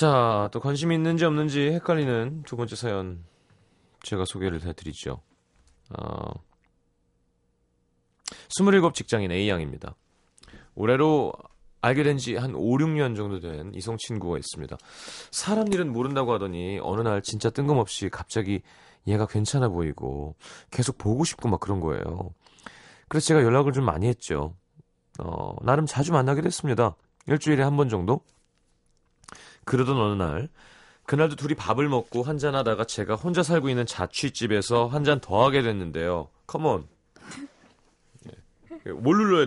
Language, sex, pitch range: Korean, male, 95-145 Hz